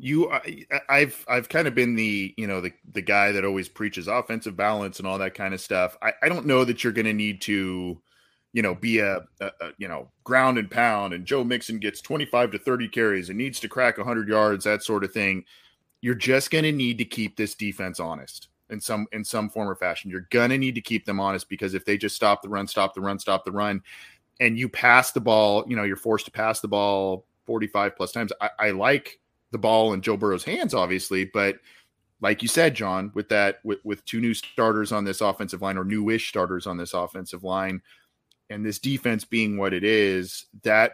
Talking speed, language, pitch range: 230 wpm, English, 100-120 Hz